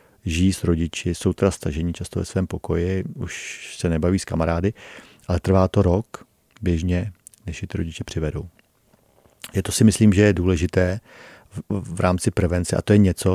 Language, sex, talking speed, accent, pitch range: Czech, male, 185 wpm, native, 85-100 Hz